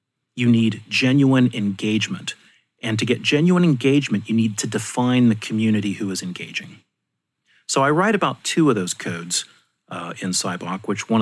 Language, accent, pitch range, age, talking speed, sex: English, American, 100-120 Hz, 40-59, 165 wpm, male